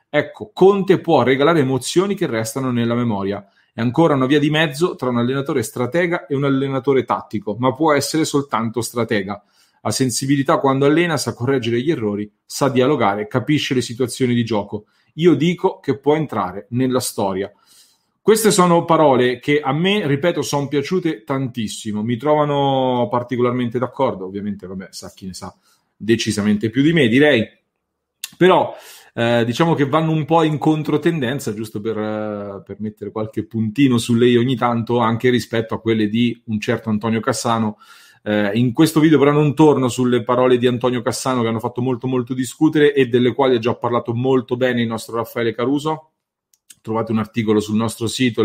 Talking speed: 170 wpm